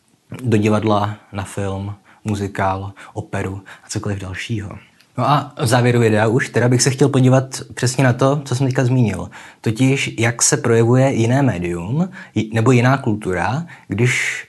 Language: Czech